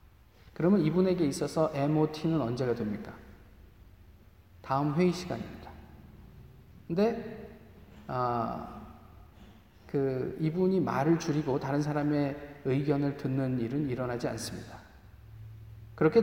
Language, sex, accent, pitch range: Korean, male, native, 110-180 Hz